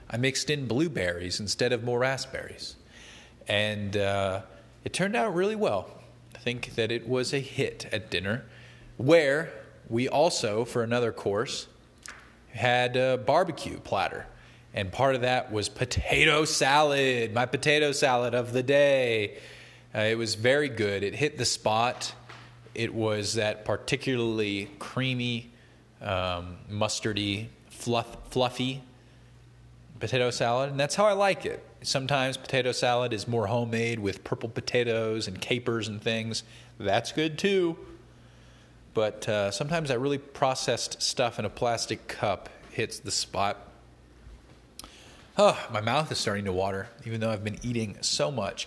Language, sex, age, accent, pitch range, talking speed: English, male, 20-39, American, 110-135 Hz, 145 wpm